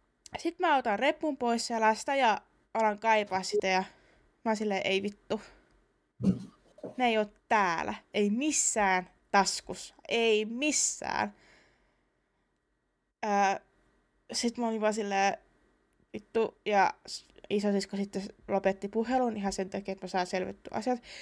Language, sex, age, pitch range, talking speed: Finnish, female, 20-39, 195-250 Hz, 120 wpm